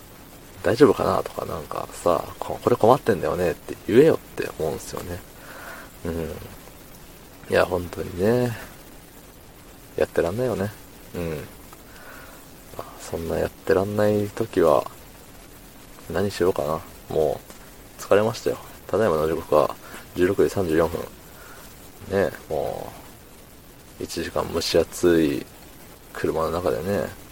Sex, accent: male, native